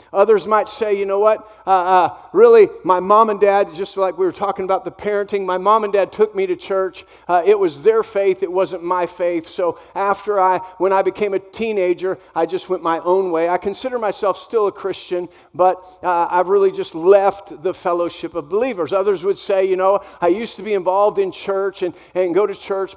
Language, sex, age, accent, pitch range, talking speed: English, male, 50-69, American, 180-215 Hz, 220 wpm